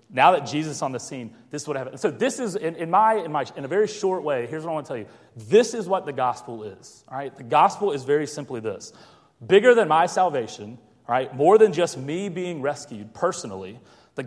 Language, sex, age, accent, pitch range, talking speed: English, male, 30-49, American, 115-155 Hz, 250 wpm